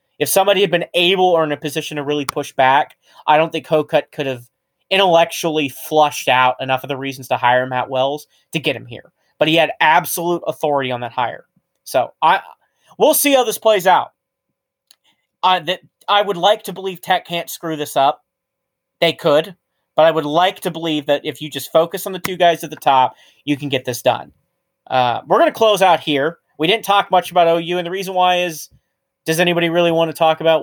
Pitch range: 145-180 Hz